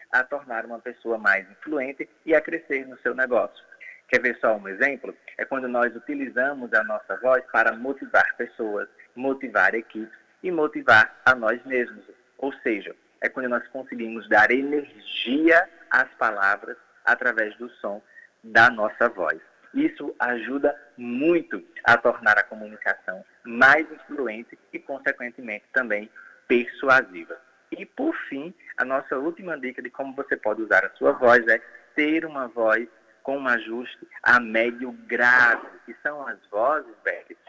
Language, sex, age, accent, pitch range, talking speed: Portuguese, male, 20-39, Brazilian, 115-140 Hz, 150 wpm